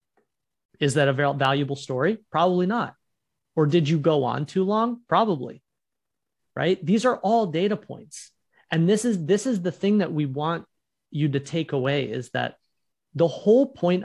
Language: English